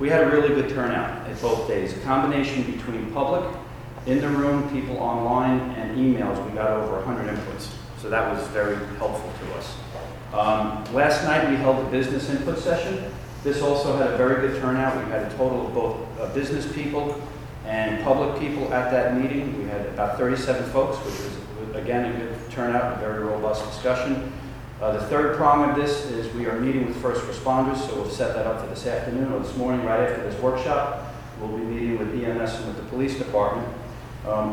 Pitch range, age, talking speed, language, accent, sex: 115-135 Hz, 40-59, 200 wpm, English, American, male